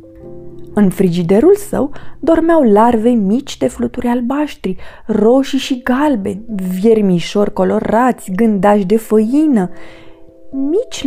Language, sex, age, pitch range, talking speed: Romanian, female, 20-39, 205-290 Hz, 100 wpm